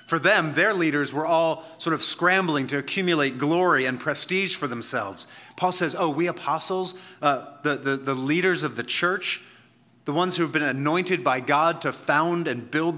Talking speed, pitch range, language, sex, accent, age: 185 wpm, 135-165 Hz, English, male, American, 30-49